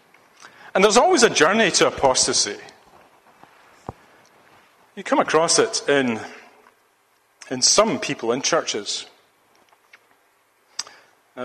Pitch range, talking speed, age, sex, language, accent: 135-180 Hz, 95 wpm, 40-59, male, English, British